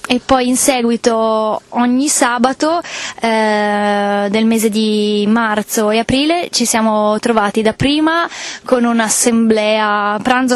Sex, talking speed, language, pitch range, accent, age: female, 120 wpm, Italian, 215-250 Hz, native, 20-39